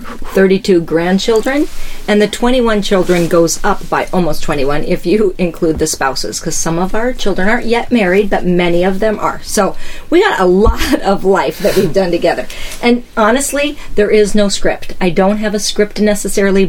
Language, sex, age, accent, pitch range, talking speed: English, female, 40-59, American, 160-195 Hz, 185 wpm